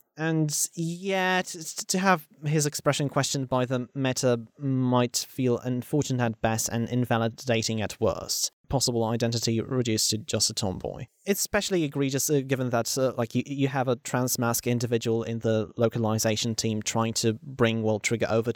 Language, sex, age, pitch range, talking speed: English, male, 30-49, 120-145 Hz, 160 wpm